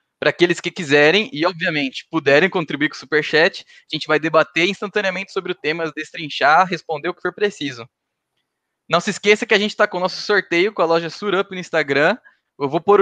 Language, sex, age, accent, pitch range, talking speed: Portuguese, male, 20-39, Brazilian, 155-185 Hz, 210 wpm